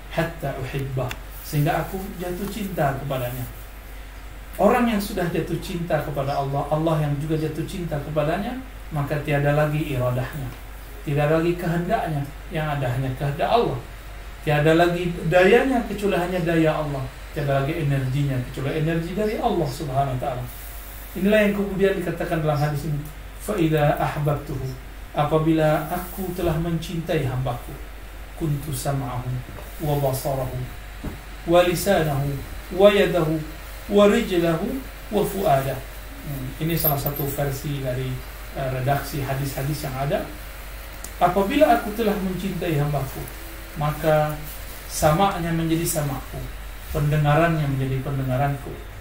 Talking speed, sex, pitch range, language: 105 wpm, male, 135-170 Hz, Indonesian